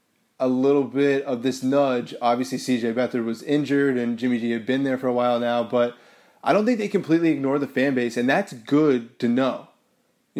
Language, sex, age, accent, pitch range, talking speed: English, male, 20-39, American, 120-135 Hz, 215 wpm